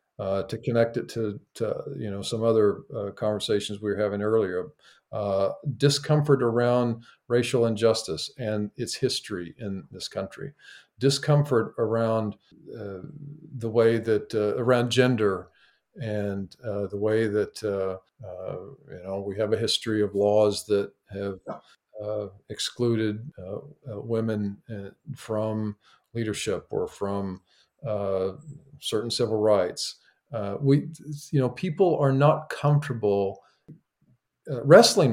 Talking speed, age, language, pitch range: 130 wpm, 50-69, English, 105-135 Hz